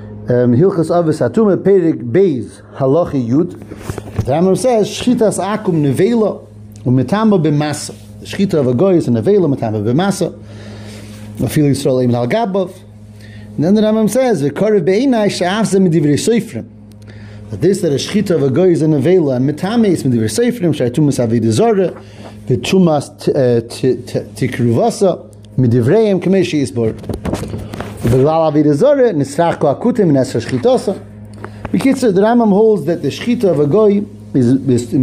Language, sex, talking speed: English, male, 120 wpm